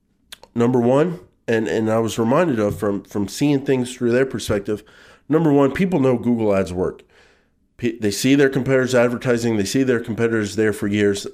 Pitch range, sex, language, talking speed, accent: 105-130 Hz, male, English, 185 wpm, American